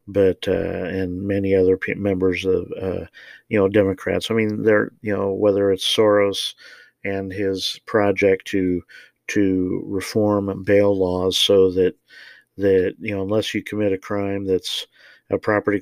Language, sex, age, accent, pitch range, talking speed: English, male, 50-69, American, 90-100 Hz, 150 wpm